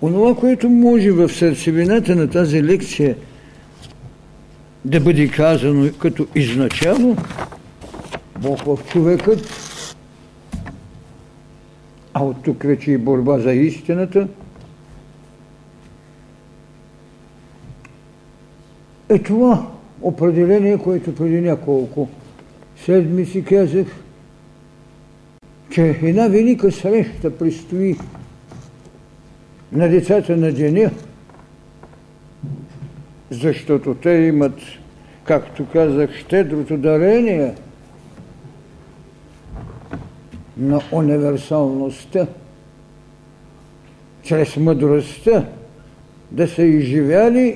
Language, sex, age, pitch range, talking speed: Bulgarian, male, 60-79, 145-180 Hz, 70 wpm